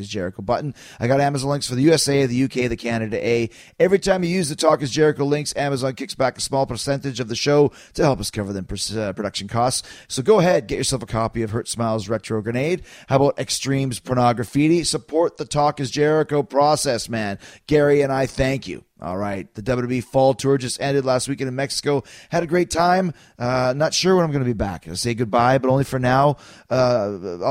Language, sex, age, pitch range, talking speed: English, male, 30-49, 115-140 Hz, 220 wpm